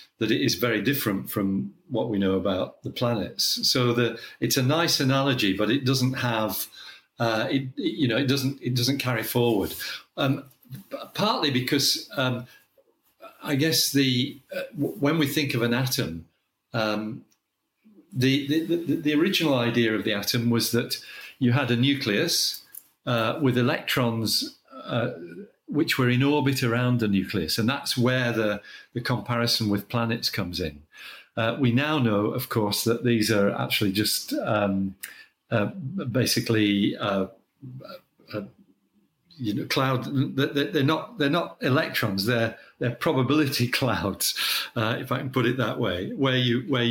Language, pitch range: English, 110-135 Hz